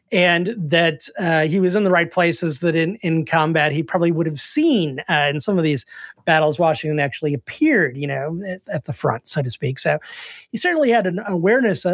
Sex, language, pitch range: male, English, 145-190 Hz